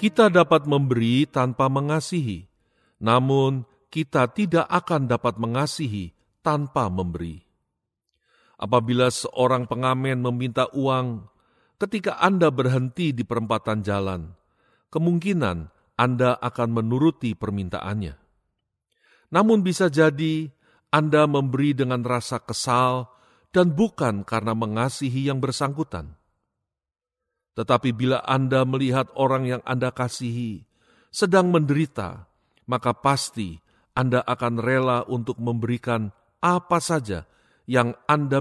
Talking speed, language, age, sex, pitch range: 100 wpm, Indonesian, 50-69, male, 115-140 Hz